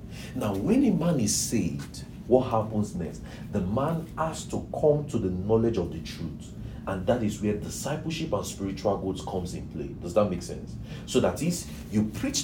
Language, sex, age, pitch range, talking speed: English, male, 40-59, 90-120 Hz, 195 wpm